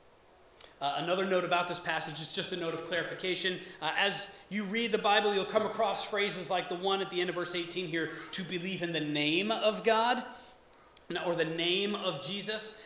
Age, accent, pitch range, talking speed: 30-49, American, 155-200 Hz, 205 wpm